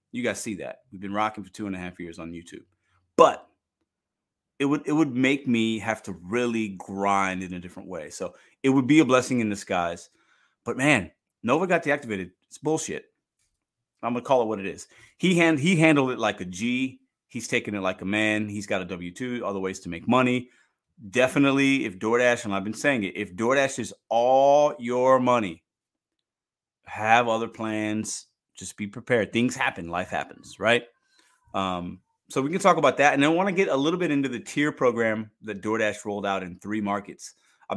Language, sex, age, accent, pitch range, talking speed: English, male, 30-49, American, 100-140 Hz, 200 wpm